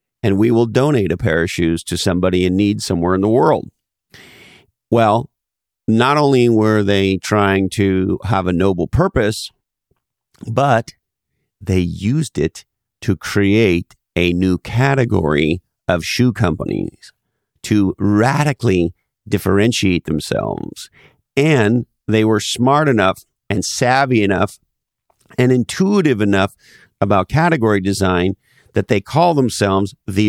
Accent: American